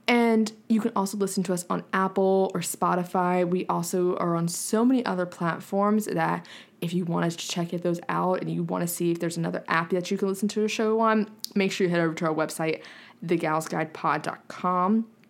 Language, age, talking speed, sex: English, 20-39, 210 wpm, female